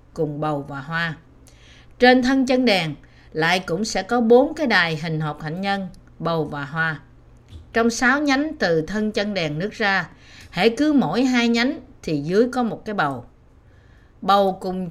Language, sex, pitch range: Vietnamese, female, 150-230 Hz